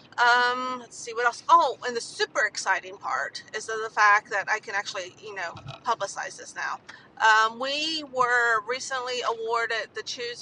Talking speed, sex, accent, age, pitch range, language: 175 wpm, female, American, 30-49, 200-245 Hz, English